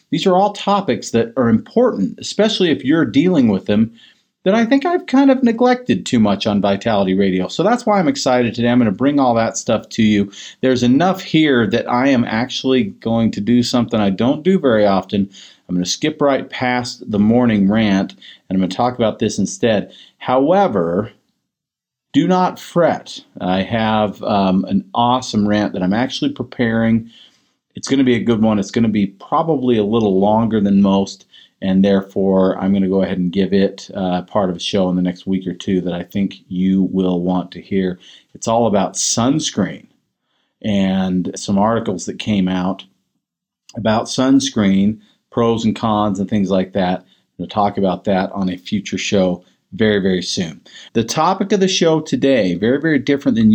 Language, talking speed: English, 195 wpm